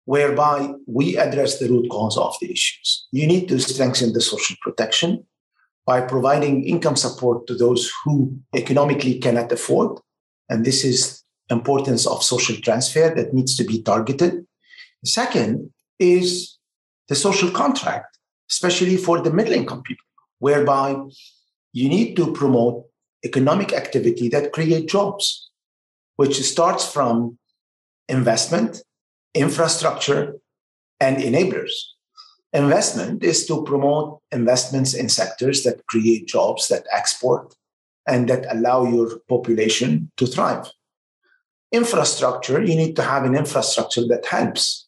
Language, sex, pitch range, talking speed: English, male, 125-175 Hz, 125 wpm